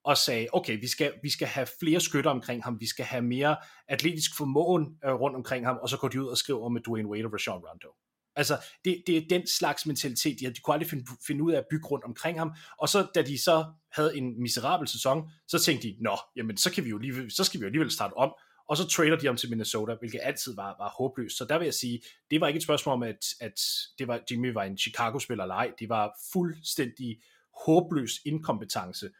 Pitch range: 115-150 Hz